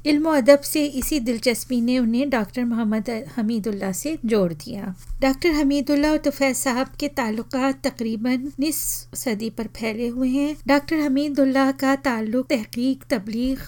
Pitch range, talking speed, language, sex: 225-275 Hz, 125 wpm, Hindi, female